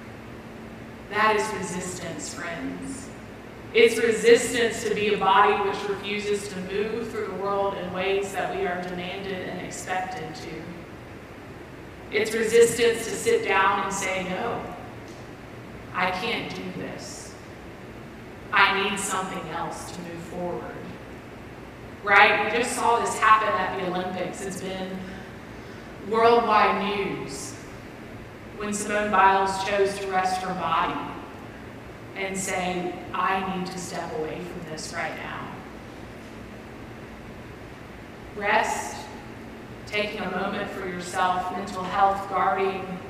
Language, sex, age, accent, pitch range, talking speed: English, female, 30-49, American, 185-210 Hz, 120 wpm